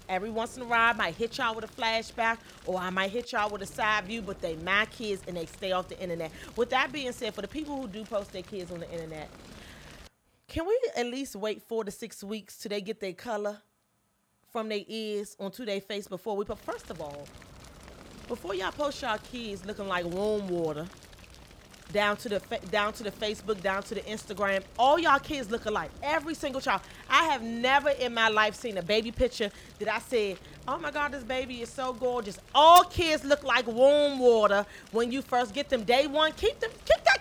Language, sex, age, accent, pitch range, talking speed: English, female, 30-49, American, 205-310 Hz, 225 wpm